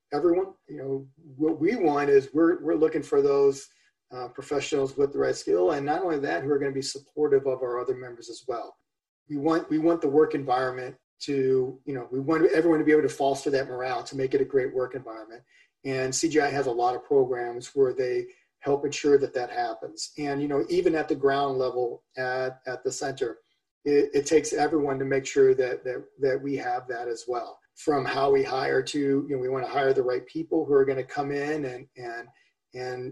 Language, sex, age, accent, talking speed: English, male, 40-59, American, 225 wpm